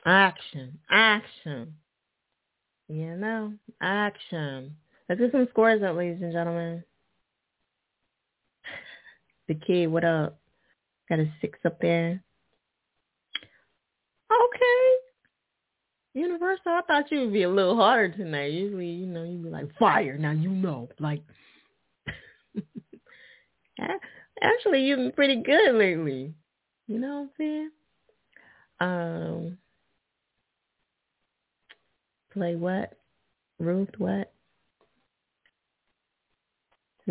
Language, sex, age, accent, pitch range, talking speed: English, female, 30-49, American, 155-220 Hz, 95 wpm